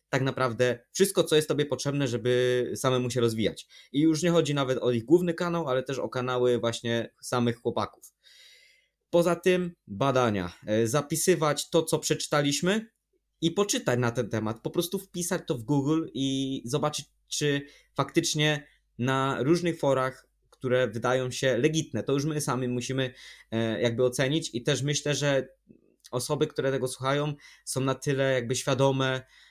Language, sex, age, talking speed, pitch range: Polish, male, 20-39, 155 wpm, 125-145 Hz